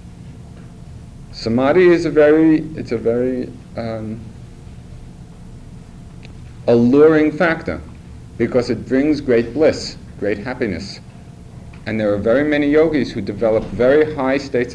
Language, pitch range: English, 95-140 Hz